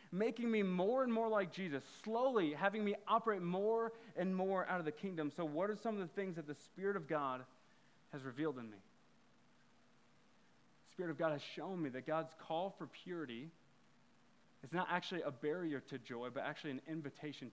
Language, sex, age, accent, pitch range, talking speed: English, male, 30-49, American, 150-205 Hz, 195 wpm